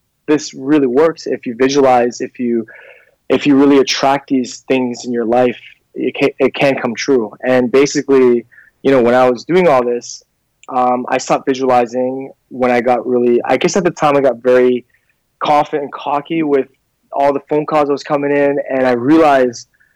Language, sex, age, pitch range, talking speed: English, male, 20-39, 125-140 Hz, 190 wpm